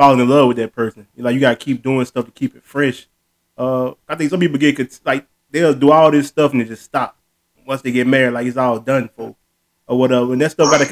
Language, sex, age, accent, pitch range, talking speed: English, male, 20-39, American, 125-155 Hz, 270 wpm